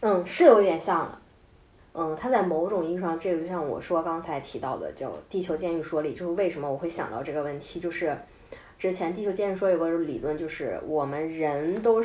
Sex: female